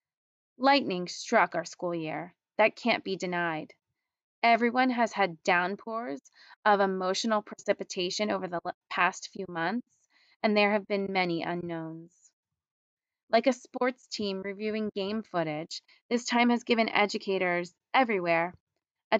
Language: English